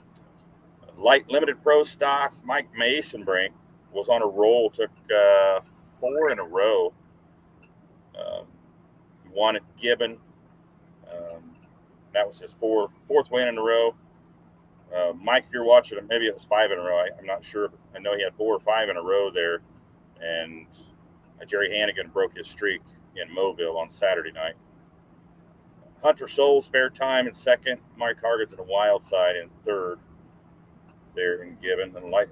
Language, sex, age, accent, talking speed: English, male, 40-59, American, 170 wpm